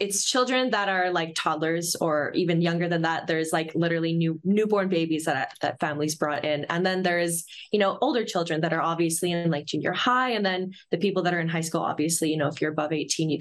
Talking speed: 235 wpm